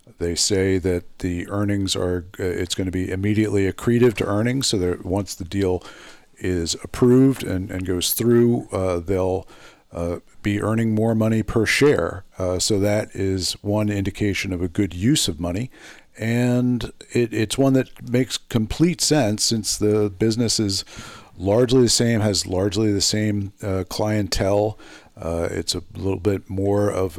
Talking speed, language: 165 wpm, English